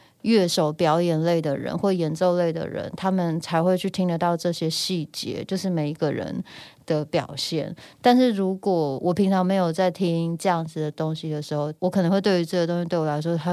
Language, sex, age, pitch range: Chinese, female, 20-39, 165-205 Hz